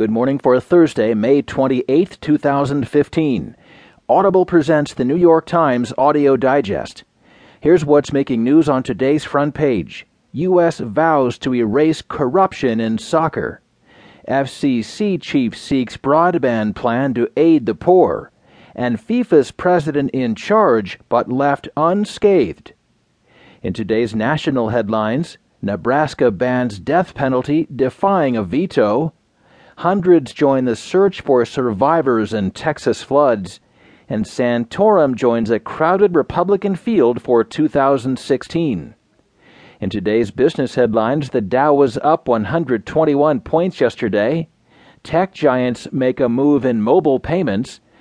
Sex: male